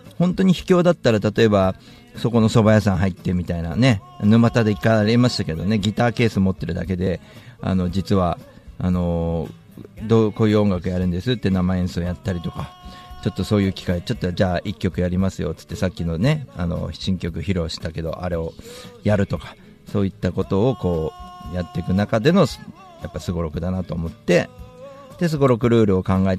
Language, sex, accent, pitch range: Japanese, male, native, 85-110 Hz